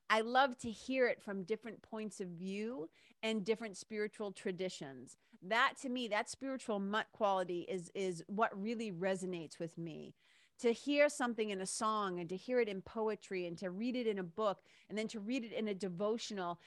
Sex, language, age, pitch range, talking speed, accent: female, English, 40-59, 180-230 Hz, 200 wpm, American